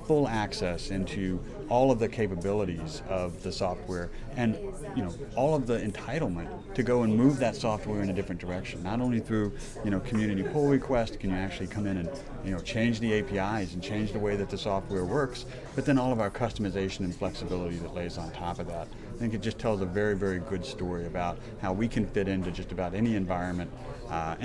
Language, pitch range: German, 95-120 Hz